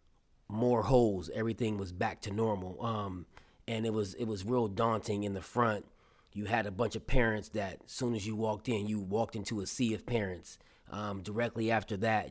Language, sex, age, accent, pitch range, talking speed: English, male, 30-49, American, 105-120 Hz, 205 wpm